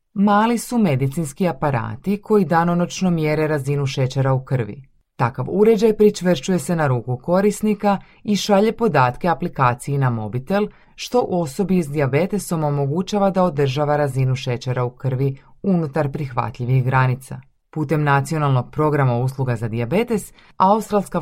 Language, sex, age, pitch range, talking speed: Croatian, female, 30-49, 130-185 Hz, 125 wpm